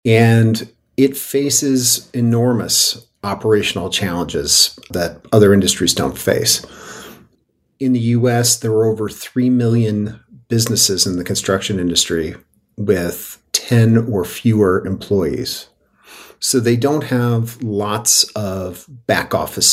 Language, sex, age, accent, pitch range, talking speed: English, male, 50-69, American, 100-120 Hz, 115 wpm